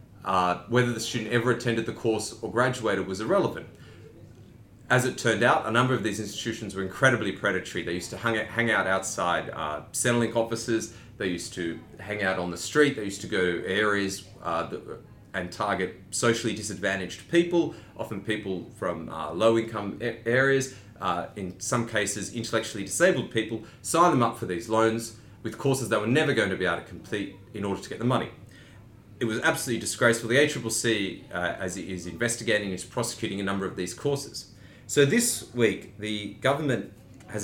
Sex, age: male, 30-49